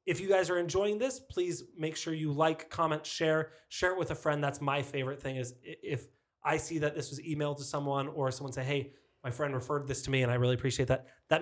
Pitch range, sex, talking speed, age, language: 140-160 Hz, male, 250 wpm, 20-39, English